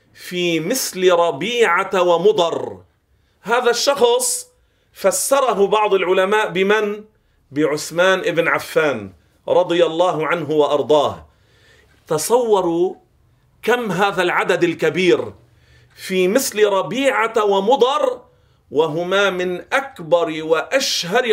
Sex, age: male, 40-59